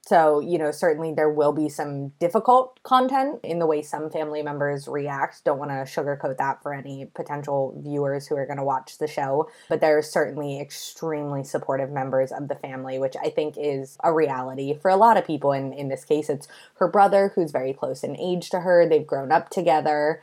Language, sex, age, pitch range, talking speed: English, female, 20-39, 145-180 Hz, 215 wpm